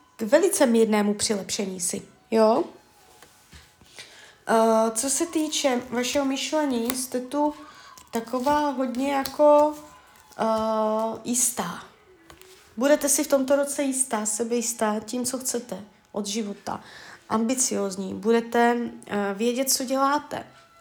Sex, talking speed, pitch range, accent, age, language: female, 105 wpm, 210-255 Hz, native, 20-39, Czech